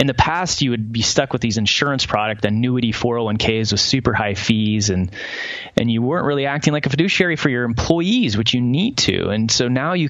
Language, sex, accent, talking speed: English, male, American, 220 wpm